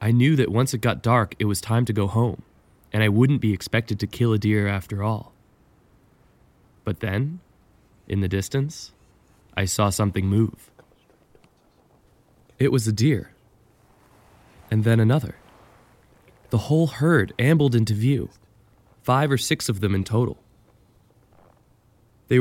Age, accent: 20-39, American